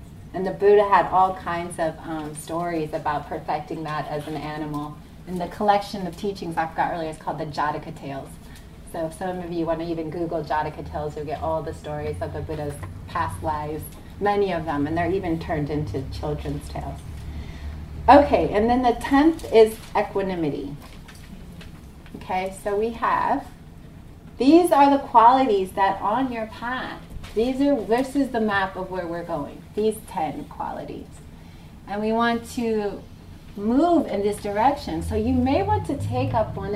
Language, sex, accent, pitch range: English, female, American, 150-205 Hz